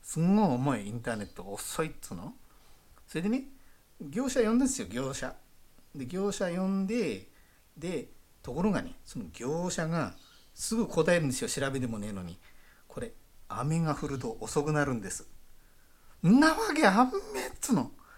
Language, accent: Japanese, native